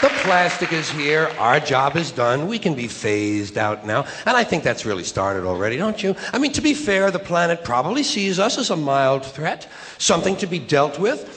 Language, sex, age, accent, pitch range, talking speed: English, male, 60-79, American, 125-190 Hz, 220 wpm